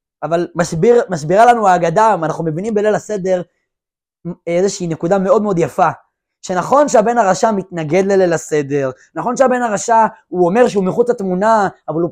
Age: 20-39